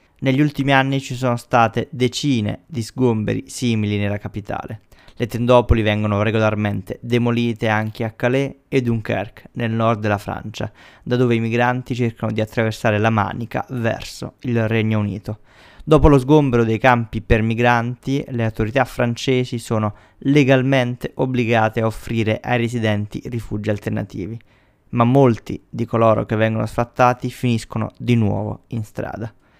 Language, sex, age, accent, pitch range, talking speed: Italian, male, 20-39, native, 110-125 Hz, 140 wpm